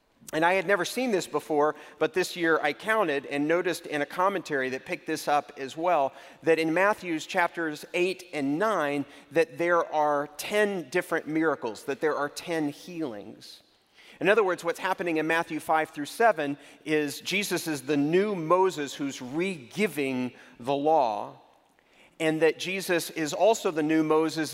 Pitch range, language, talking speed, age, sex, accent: 140-175 Hz, English, 170 wpm, 40-59, male, American